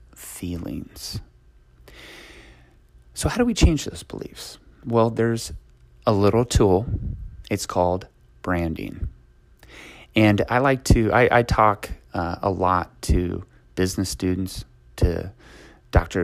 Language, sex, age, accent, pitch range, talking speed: English, male, 30-49, American, 75-115 Hz, 115 wpm